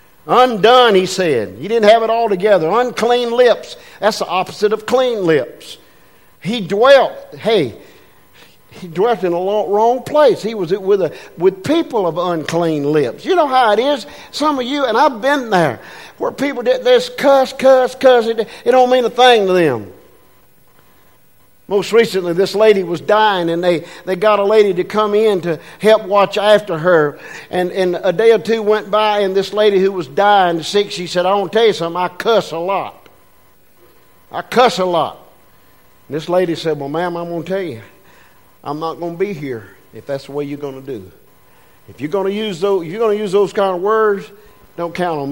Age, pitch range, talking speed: 50-69, 170-230 Hz, 195 wpm